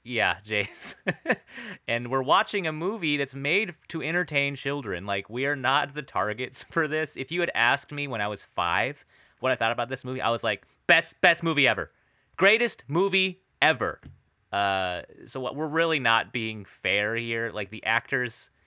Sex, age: male, 30-49